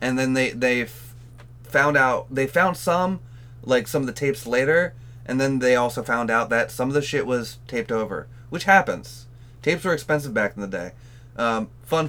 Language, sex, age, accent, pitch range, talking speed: English, male, 20-39, American, 115-130 Hz, 200 wpm